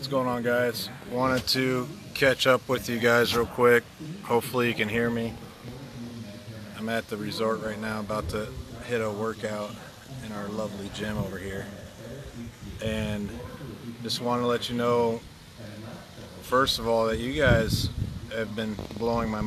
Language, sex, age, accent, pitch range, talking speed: English, male, 30-49, American, 110-125 Hz, 155 wpm